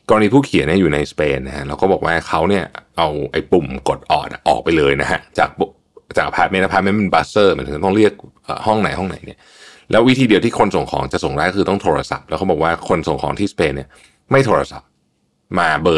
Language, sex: Thai, male